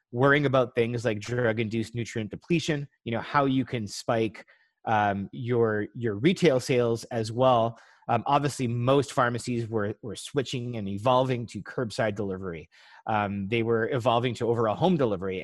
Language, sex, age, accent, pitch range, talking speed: English, male, 30-49, American, 110-135 Hz, 155 wpm